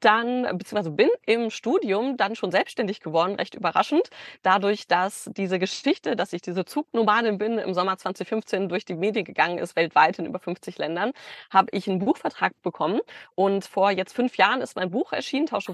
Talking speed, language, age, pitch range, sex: 185 wpm, German, 20-39, 185-220 Hz, female